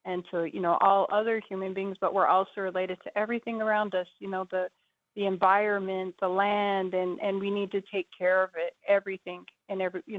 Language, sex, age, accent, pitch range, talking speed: English, female, 30-49, American, 180-205 Hz, 210 wpm